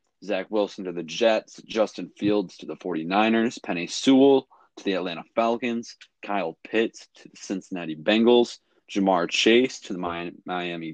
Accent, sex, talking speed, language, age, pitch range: American, male, 150 wpm, English, 20-39, 90-110 Hz